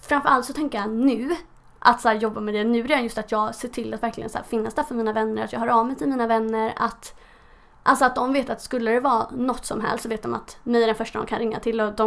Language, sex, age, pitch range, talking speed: English, female, 20-39, 220-265 Hz, 305 wpm